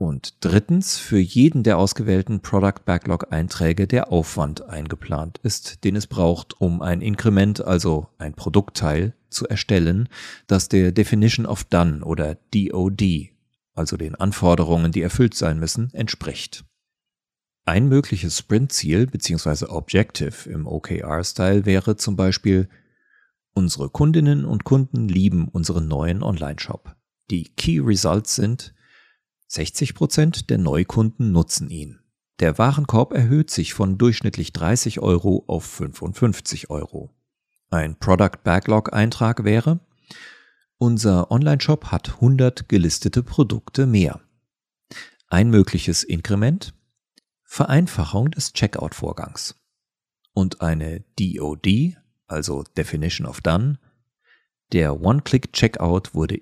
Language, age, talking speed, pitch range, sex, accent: German, 40-59, 110 wpm, 85-115 Hz, male, German